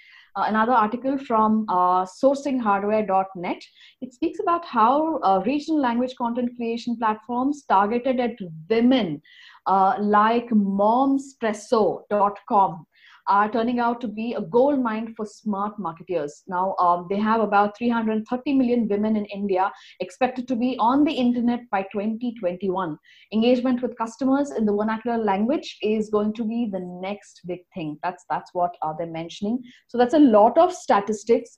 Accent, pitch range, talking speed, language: Indian, 195-245 Hz, 150 wpm, English